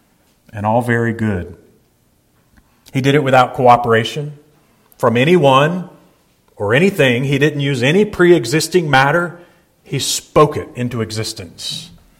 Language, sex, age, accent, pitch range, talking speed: English, male, 40-59, American, 120-155 Hz, 125 wpm